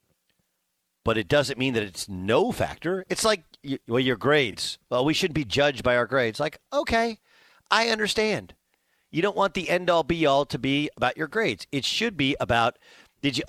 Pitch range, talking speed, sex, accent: 120-170 Hz, 185 wpm, male, American